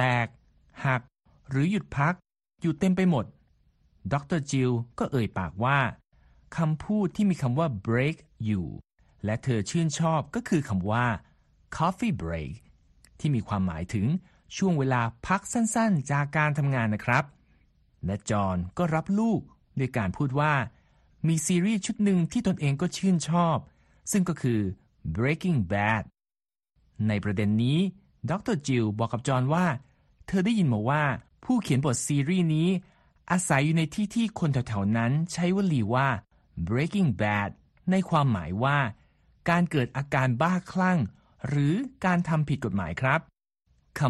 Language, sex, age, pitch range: Thai, male, 60-79, 110-165 Hz